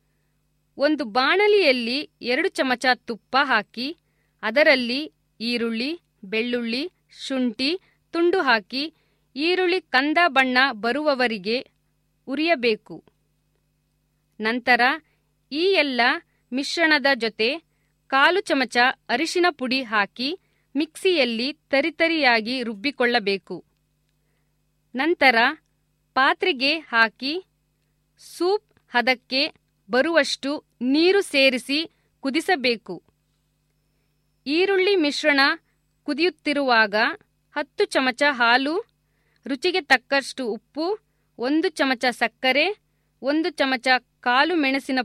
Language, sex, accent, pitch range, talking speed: Kannada, female, native, 240-315 Hz, 75 wpm